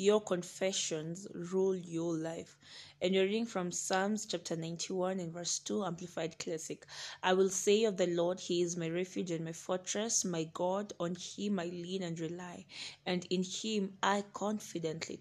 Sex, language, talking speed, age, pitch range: female, English, 170 wpm, 20-39, 170-195 Hz